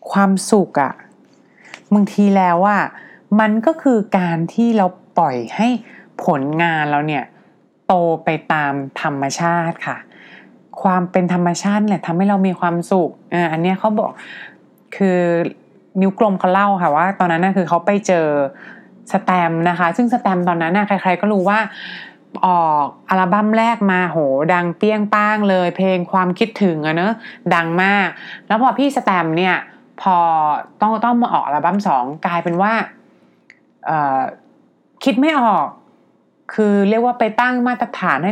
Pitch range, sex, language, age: 170-215 Hz, female, English, 20-39